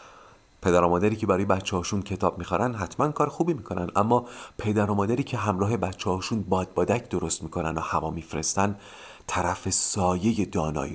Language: Persian